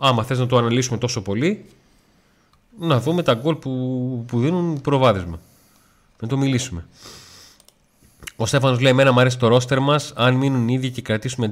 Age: 30-49